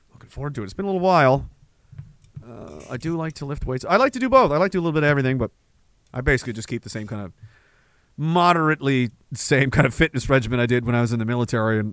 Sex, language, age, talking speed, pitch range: male, English, 40-59, 265 wpm, 120-165 Hz